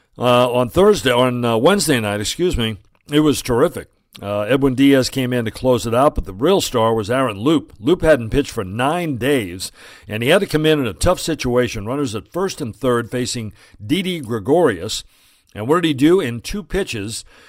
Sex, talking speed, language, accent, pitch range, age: male, 205 wpm, English, American, 110-140 Hz, 60-79